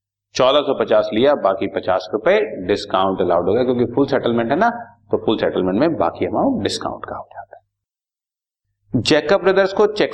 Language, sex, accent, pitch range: Hindi, male, native, 105-165 Hz